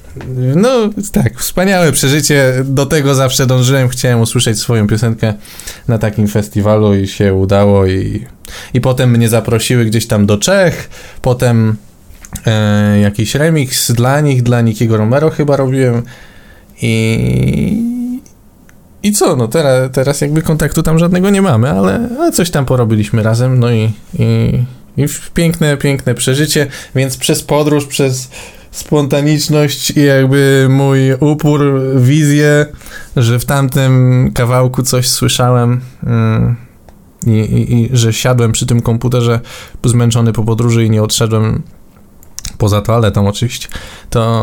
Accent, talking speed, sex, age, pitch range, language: native, 130 wpm, male, 20-39, 110-135 Hz, Polish